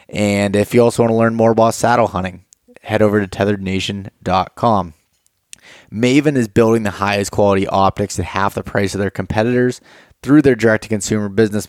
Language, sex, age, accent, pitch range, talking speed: English, male, 20-39, American, 100-115 Hz, 170 wpm